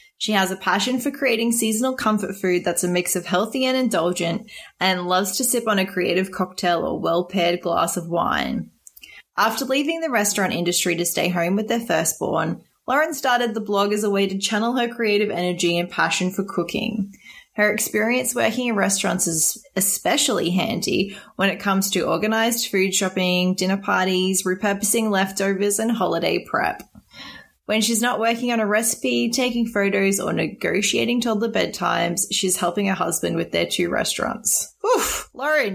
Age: 20-39